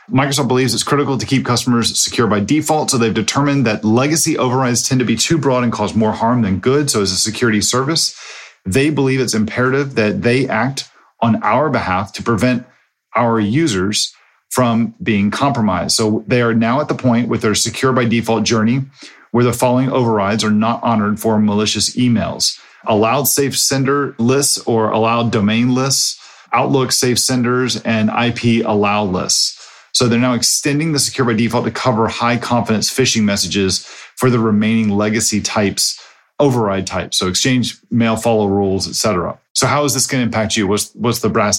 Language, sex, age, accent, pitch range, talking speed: English, male, 40-59, American, 110-130 Hz, 180 wpm